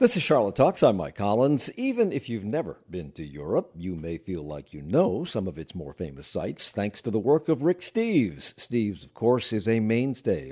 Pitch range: 85-125 Hz